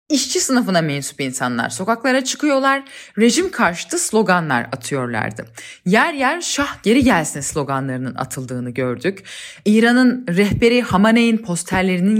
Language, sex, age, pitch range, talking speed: Turkish, female, 30-49, 170-250 Hz, 110 wpm